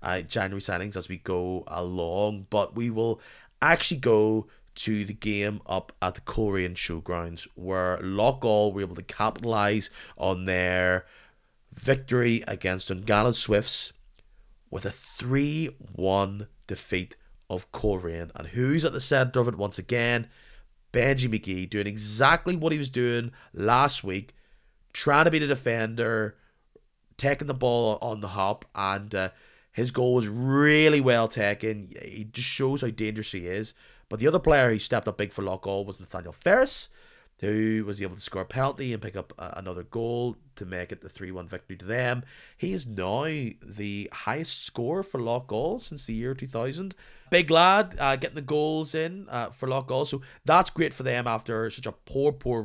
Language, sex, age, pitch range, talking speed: English, male, 30-49, 100-130 Hz, 170 wpm